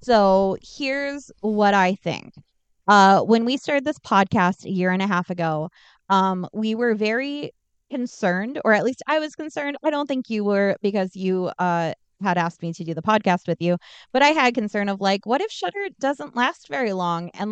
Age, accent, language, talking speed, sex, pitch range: 20-39, American, English, 200 wpm, female, 190-245 Hz